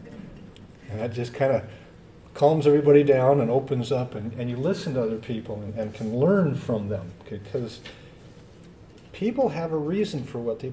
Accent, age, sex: American, 50-69, male